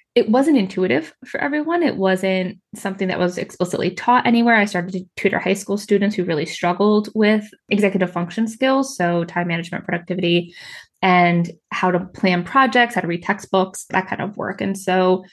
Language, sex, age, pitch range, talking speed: English, female, 20-39, 180-215 Hz, 180 wpm